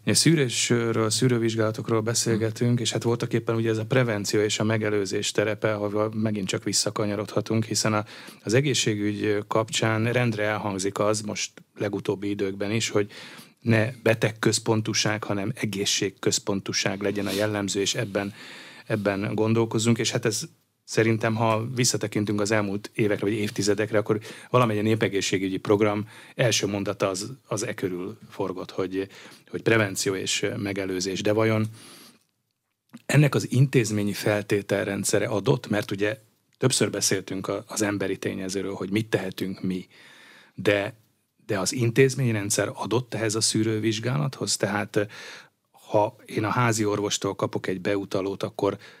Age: 30-49